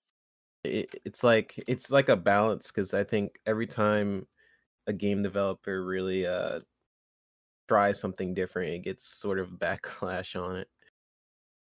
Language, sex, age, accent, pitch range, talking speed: English, male, 20-39, American, 95-110 Hz, 145 wpm